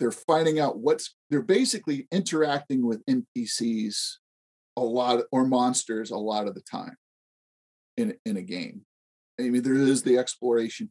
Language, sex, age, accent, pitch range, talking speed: English, male, 40-59, American, 120-155 Hz, 155 wpm